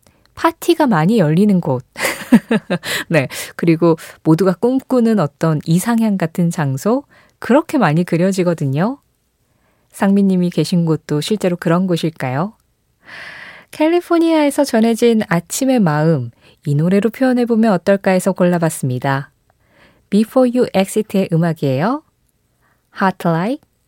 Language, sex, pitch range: Korean, female, 150-220 Hz